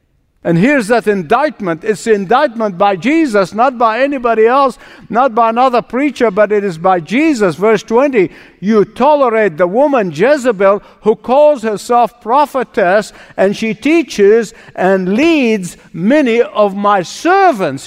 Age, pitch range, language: 60-79, 160-225 Hz, English